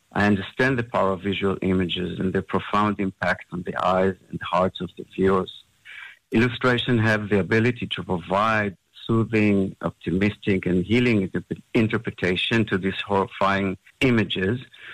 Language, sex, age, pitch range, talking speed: English, male, 50-69, 95-115 Hz, 135 wpm